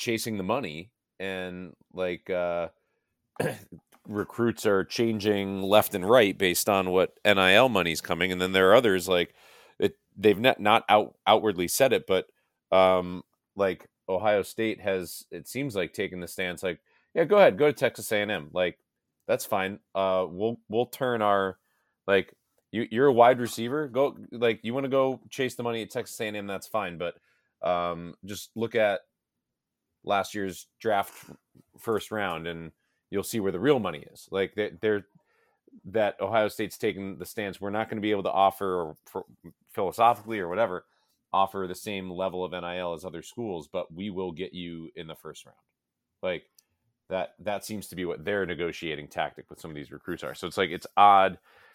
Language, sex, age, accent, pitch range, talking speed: English, male, 30-49, American, 90-110 Hz, 180 wpm